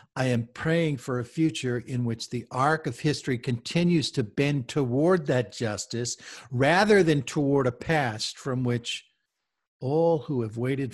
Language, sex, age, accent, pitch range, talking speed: English, male, 60-79, American, 105-140 Hz, 160 wpm